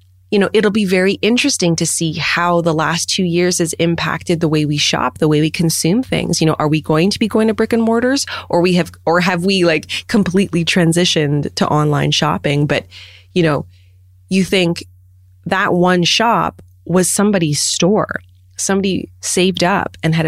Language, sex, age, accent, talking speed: English, female, 20-39, American, 190 wpm